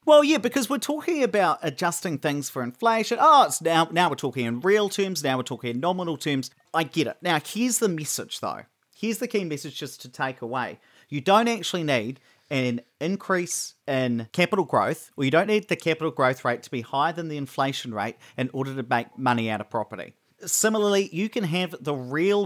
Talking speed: 210 wpm